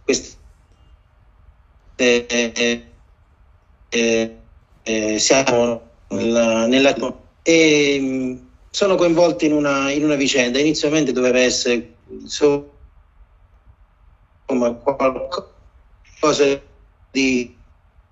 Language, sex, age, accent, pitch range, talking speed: Italian, male, 40-59, native, 95-130 Hz, 75 wpm